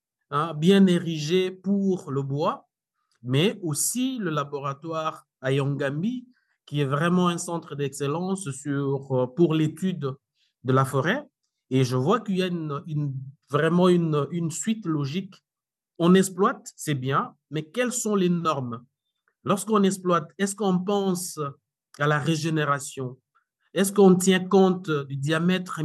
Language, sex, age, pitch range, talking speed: French, male, 50-69, 140-190 Hz, 135 wpm